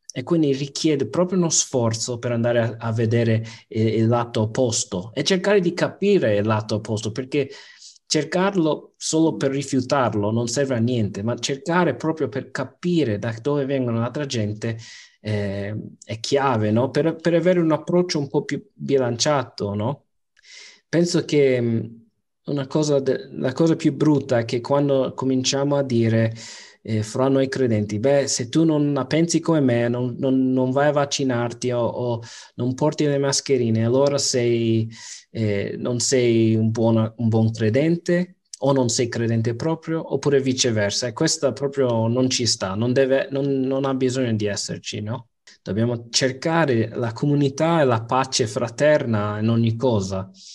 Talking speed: 160 wpm